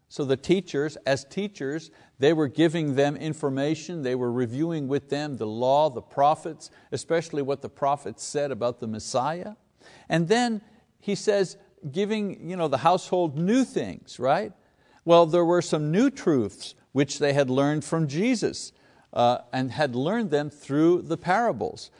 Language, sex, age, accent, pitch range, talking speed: English, male, 60-79, American, 130-180 Hz, 155 wpm